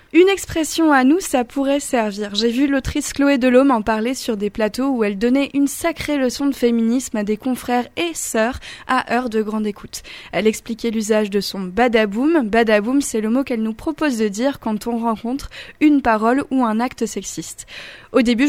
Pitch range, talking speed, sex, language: 215-260 Hz, 200 wpm, female, French